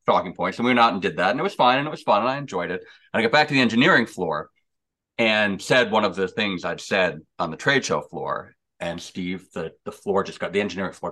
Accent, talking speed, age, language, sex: American, 280 wpm, 40-59, English, male